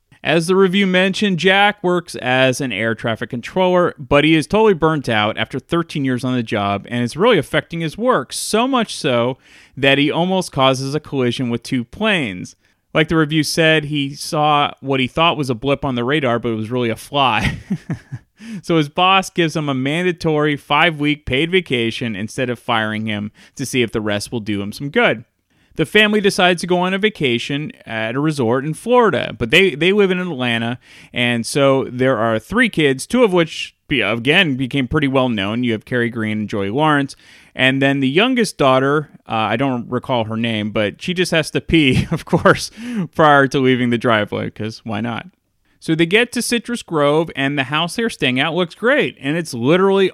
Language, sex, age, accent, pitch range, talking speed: English, male, 30-49, American, 120-170 Hz, 205 wpm